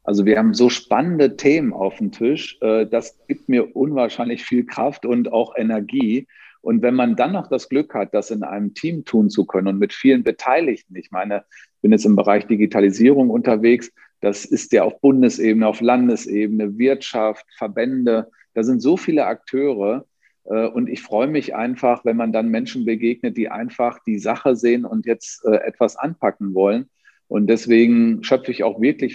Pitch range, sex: 105-125 Hz, male